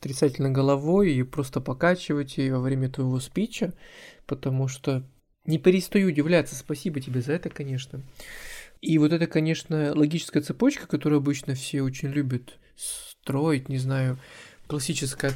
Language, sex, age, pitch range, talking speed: Russian, male, 20-39, 135-160 Hz, 135 wpm